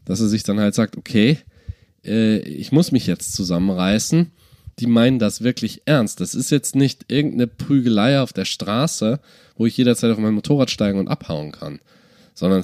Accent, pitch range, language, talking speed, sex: German, 100-125 Hz, German, 175 wpm, male